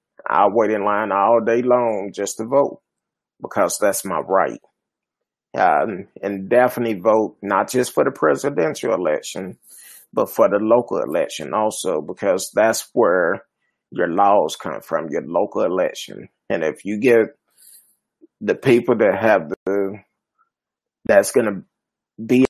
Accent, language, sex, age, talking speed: American, English, male, 30-49, 145 wpm